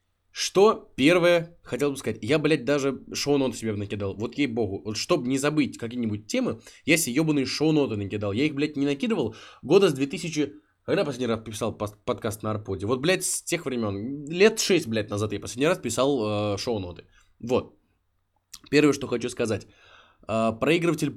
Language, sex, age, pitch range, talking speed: Russian, male, 20-39, 105-145 Hz, 175 wpm